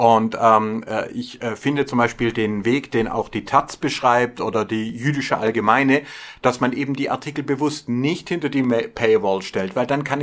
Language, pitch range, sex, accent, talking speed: German, 130-155 Hz, male, German, 190 wpm